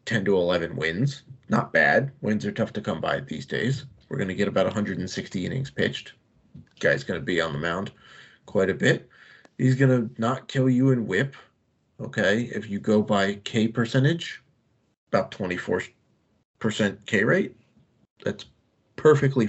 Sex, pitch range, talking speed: male, 100-130 Hz, 165 wpm